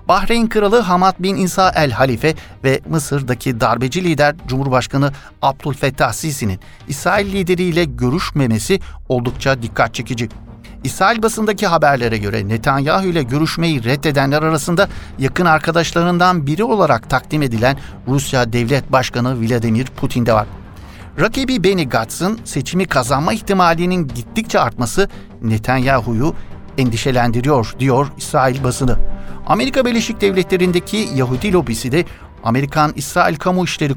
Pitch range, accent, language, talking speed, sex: 120-160 Hz, native, Turkish, 115 wpm, male